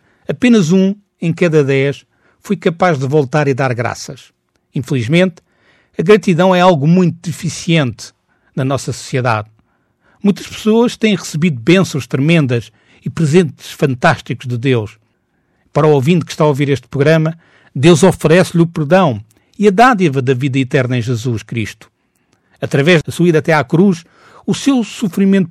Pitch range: 130-180 Hz